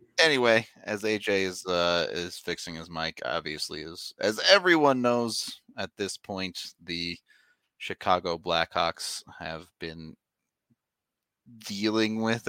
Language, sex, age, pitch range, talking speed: English, male, 30-49, 85-110 Hz, 115 wpm